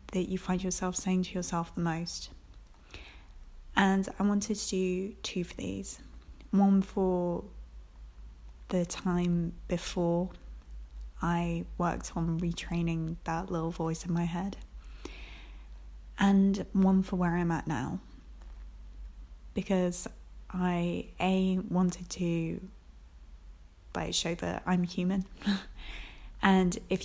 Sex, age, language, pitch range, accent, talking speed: female, 10-29, English, 165-190 Hz, British, 110 wpm